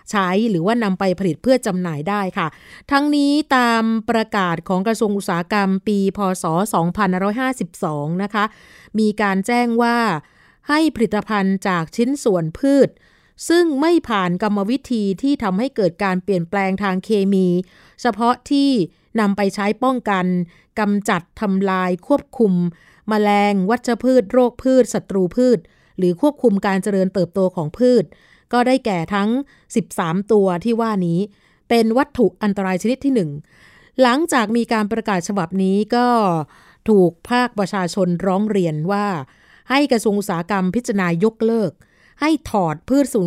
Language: Thai